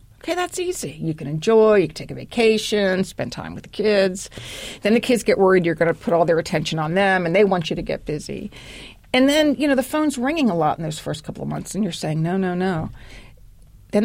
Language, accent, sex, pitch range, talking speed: English, American, female, 160-210 Hz, 250 wpm